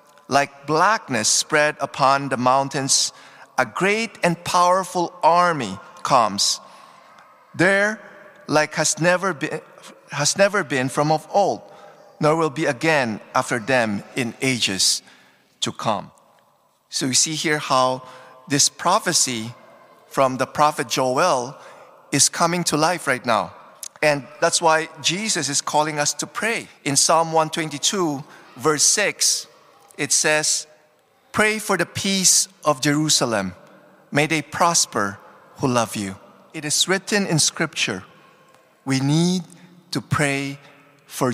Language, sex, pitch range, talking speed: English, male, 140-175 Hz, 130 wpm